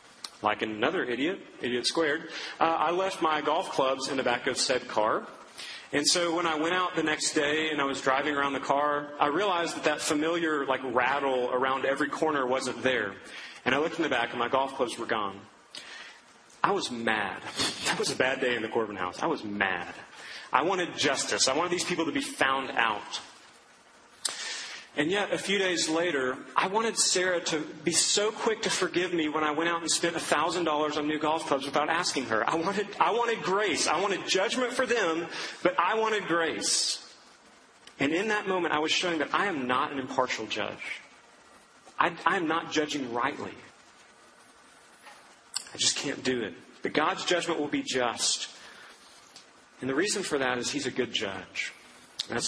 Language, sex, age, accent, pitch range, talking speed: English, male, 30-49, American, 140-175 Hz, 190 wpm